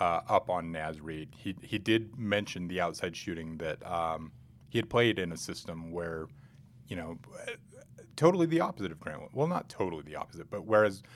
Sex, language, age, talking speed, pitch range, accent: male, English, 30-49, 195 wpm, 85-110 Hz, American